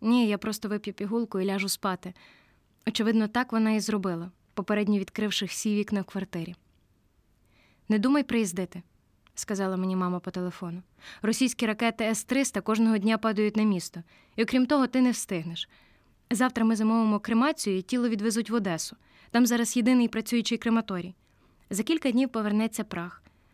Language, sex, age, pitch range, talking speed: Ukrainian, female, 20-39, 190-230 Hz, 155 wpm